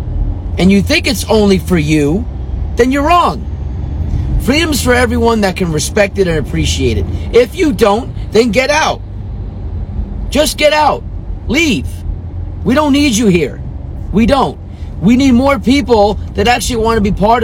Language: English